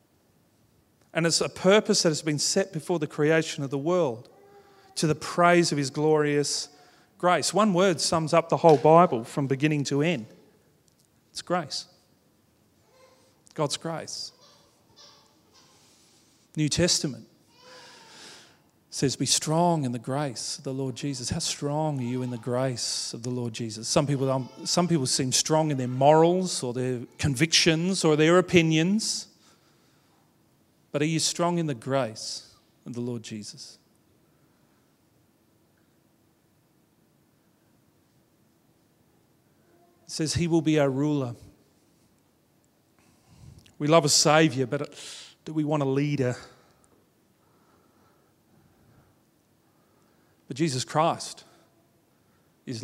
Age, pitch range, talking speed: 40-59, 130-165 Hz, 120 wpm